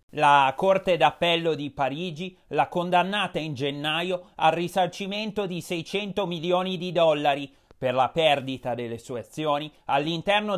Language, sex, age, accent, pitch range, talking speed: Italian, male, 30-49, native, 140-180 Hz, 130 wpm